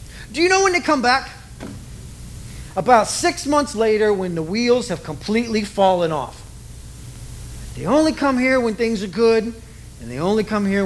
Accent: American